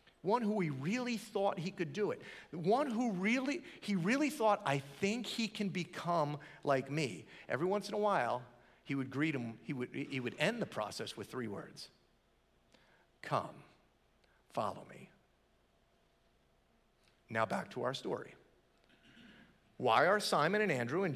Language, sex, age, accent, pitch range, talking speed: English, male, 40-59, American, 170-250 Hz, 155 wpm